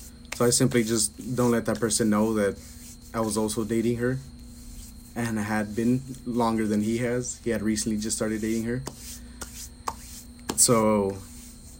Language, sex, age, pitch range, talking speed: English, male, 20-39, 100-125 Hz, 145 wpm